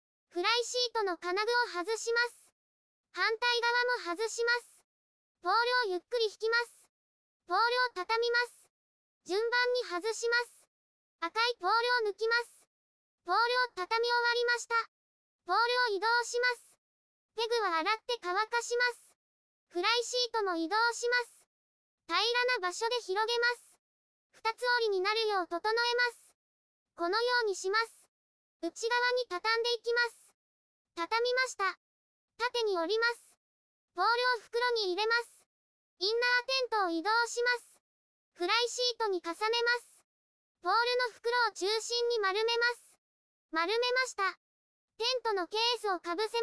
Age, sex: 20-39, male